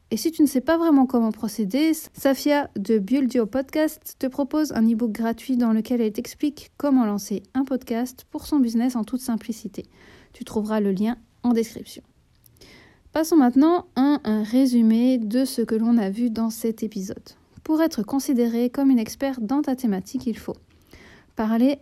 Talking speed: 175 wpm